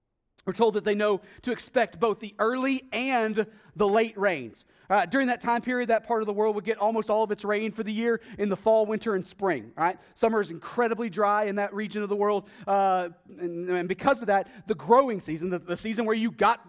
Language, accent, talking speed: English, American, 230 wpm